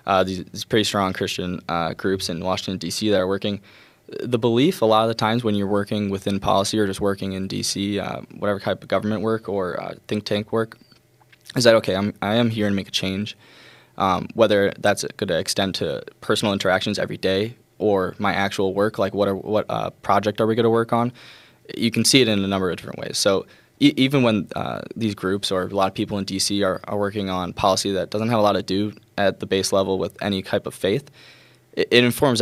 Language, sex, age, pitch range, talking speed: English, male, 10-29, 95-110 Hz, 235 wpm